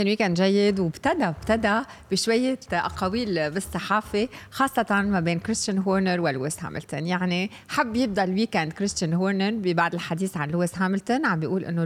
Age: 20-39